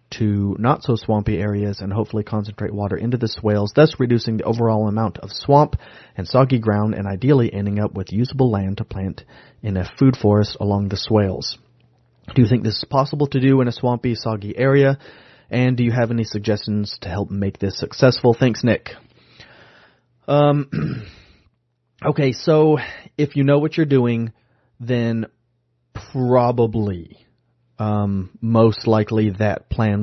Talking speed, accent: 155 wpm, American